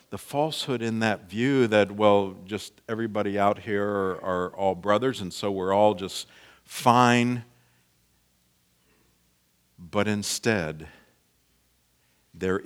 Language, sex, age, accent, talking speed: English, male, 50-69, American, 115 wpm